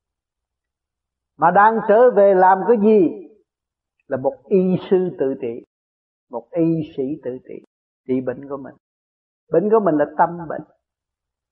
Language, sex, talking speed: Vietnamese, male, 145 wpm